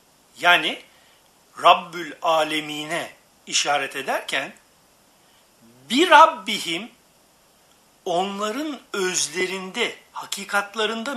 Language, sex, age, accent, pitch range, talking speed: Turkish, male, 60-79, native, 180-270 Hz, 55 wpm